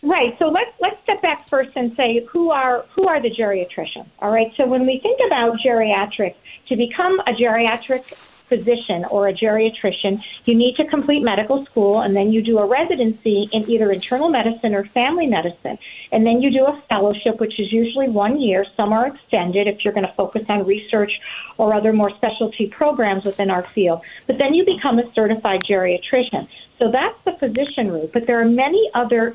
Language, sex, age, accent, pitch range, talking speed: English, female, 40-59, American, 205-275 Hz, 195 wpm